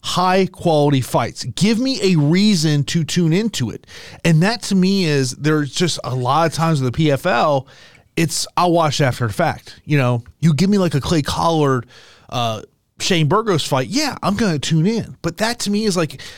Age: 30-49